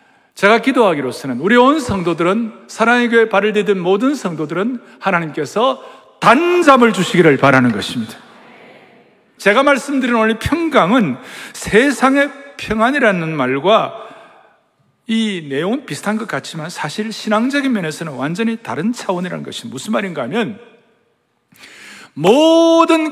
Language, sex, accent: Korean, male, native